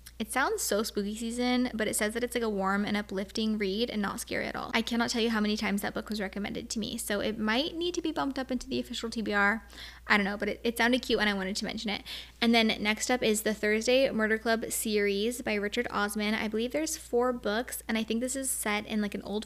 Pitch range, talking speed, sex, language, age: 210-250 Hz, 270 wpm, female, English, 20-39